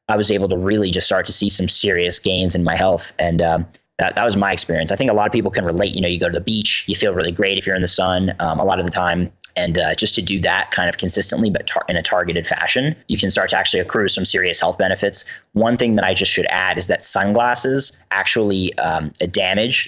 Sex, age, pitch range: male, 20-39, 90-100 Hz